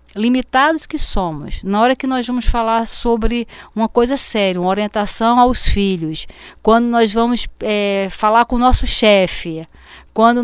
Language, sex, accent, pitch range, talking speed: Portuguese, female, Brazilian, 195-245 Hz, 150 wpm